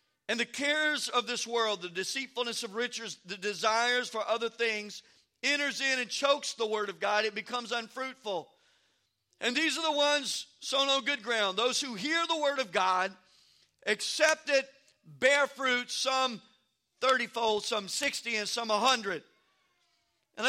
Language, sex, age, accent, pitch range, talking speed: English, male, 50-69, American, 230-285 Hz, 160 wpm